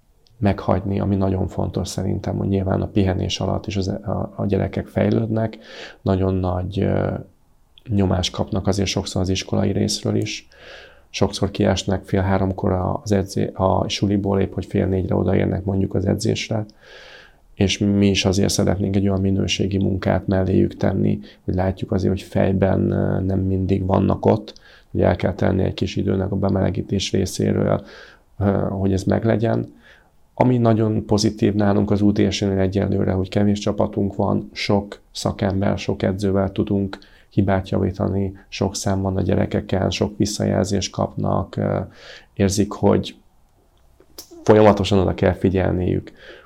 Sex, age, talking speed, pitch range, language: male, 30-49, 135 wpm, 95-105 Hz, Hungarian